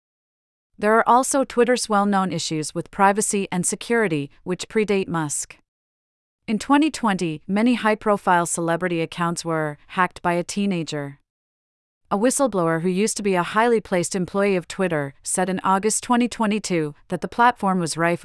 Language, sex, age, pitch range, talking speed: English, female, 40-59, 170-205 Hz, 145 wpm